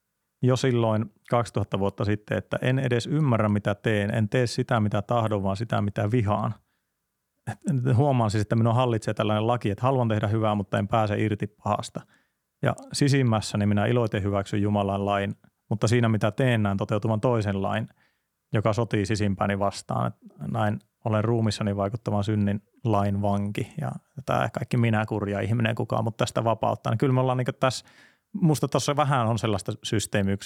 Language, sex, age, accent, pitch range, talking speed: Finnish, male, 30-49, native, 105-125 Hz, 165 wpm